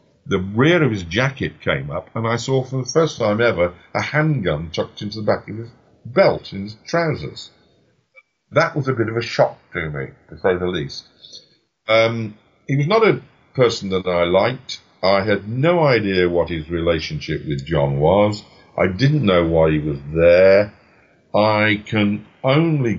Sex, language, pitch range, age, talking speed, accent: male, English, 90-115 Hz, 50-69, 180 wpm, British